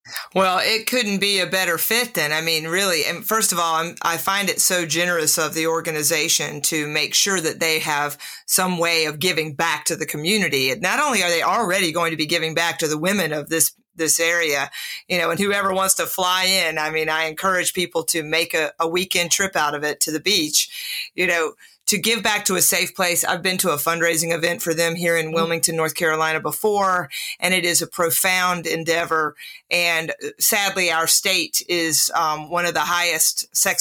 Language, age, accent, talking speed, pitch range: English, 40-59, American, 210 wpm, 160-190 Hz